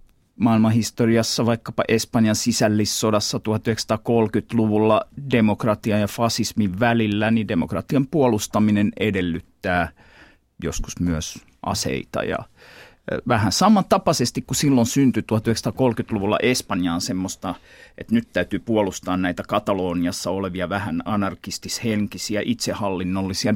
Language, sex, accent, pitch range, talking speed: Finnish, male, native, 95-115 Hz, 85 wpm